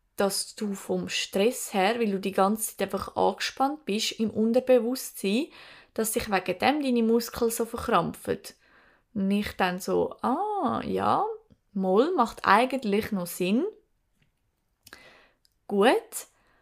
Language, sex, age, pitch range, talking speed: German, female, 20-39, 210-255 Hz, 125 wpm